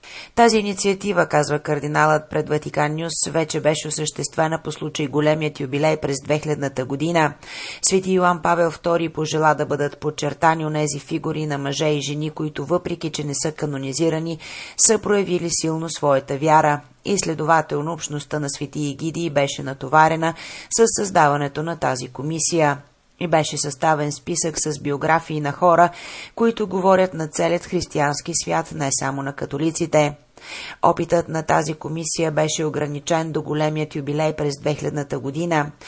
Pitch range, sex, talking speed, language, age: 150-170 Hz, female, 145 wpm, Bulgarian, 30-49